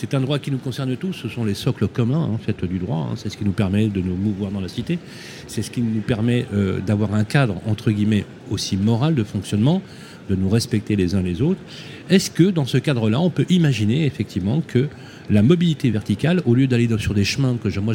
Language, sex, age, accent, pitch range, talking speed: French, male, 40-59, French, 105-140 Hz, 235 wpm